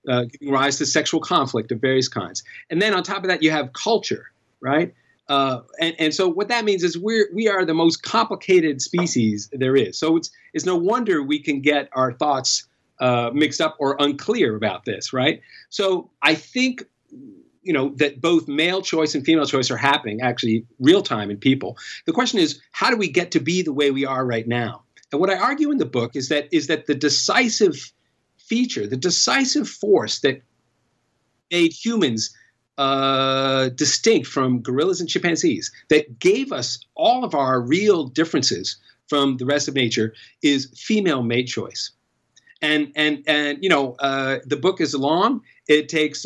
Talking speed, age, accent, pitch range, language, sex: 185 wpm, 50-69, American, 135-185 Hz, English, male